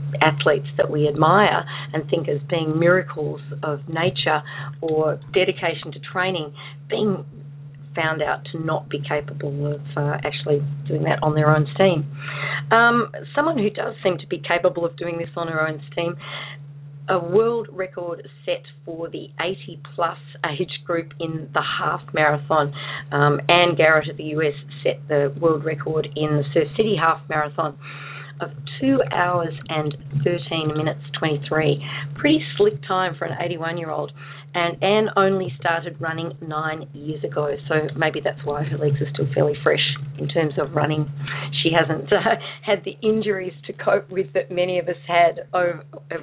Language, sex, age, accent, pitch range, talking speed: English, female, 40-59, Australian, 145-170 Hz, 165 wpm